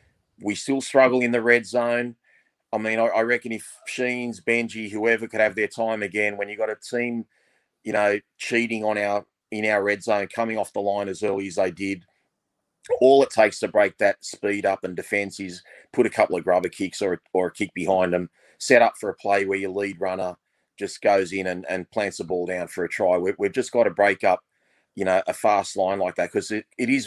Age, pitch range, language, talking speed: 30-49, 95-115 Hz, English, 235 wpm